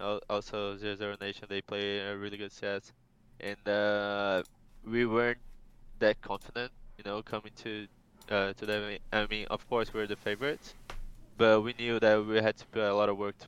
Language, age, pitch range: English, 20-39, 100-110 Hz